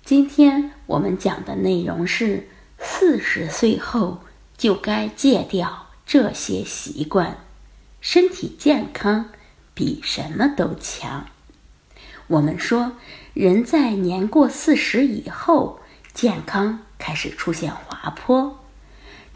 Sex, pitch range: female, 190-295 Hz